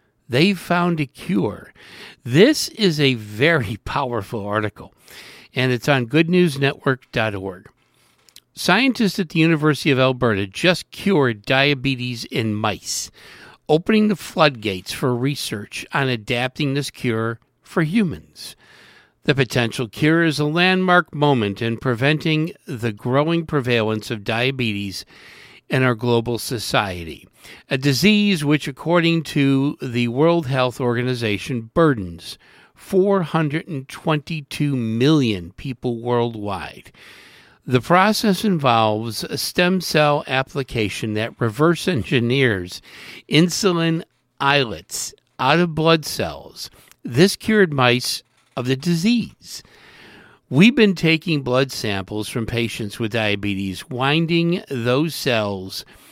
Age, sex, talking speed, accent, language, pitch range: 60-79, male, 110 wpm, American, English, 115-165 Hz